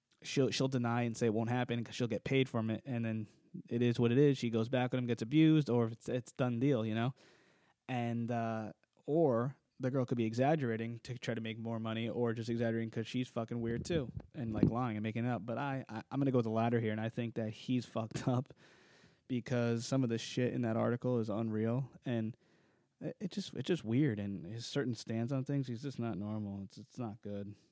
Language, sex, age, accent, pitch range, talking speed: English, male, 20-39, American, 110-125 Hz, 245 wpm